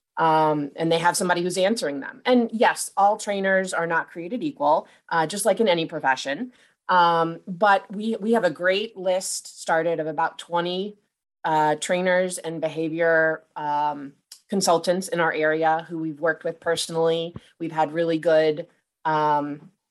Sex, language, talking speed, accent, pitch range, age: female, English, 160 wpm, American, 160-190 Hz, 30-49